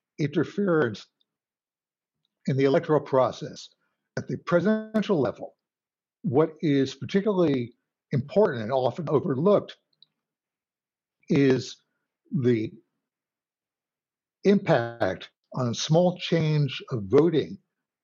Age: 60-79